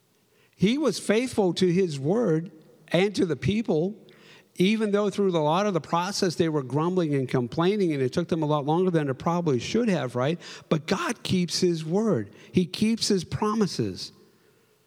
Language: English